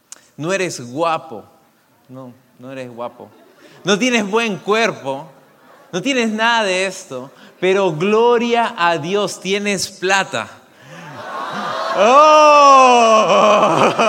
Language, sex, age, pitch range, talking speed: English, male, 30-49, 175-235 Hz, 100 wpm